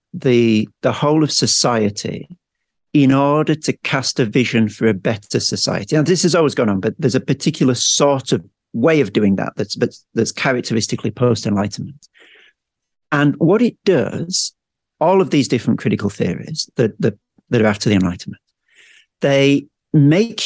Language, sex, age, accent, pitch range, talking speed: English, male, 50-69, British, 115-155 Hz, 160 wpm